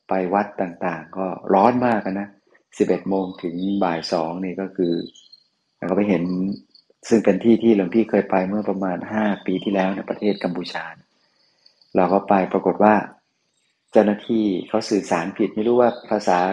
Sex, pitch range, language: male, 90-105 Hz, Thai